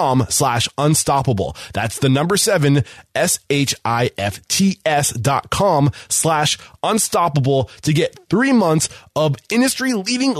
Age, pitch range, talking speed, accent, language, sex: 20-39, 115-140 Hz, 135 wpm, American, English, male